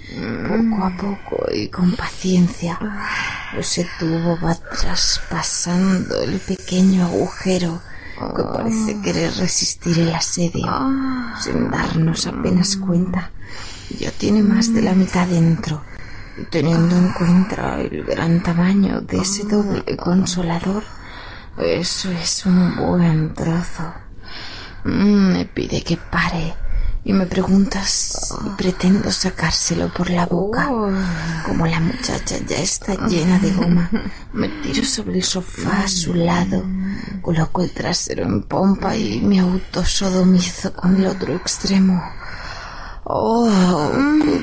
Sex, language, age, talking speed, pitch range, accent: female, English, 20-39, 120 wpm, 170-205 Hz, Spanish